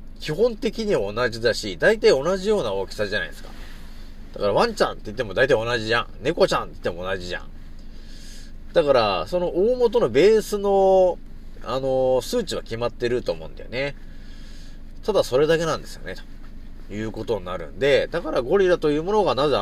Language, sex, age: Japanese, male, 30-49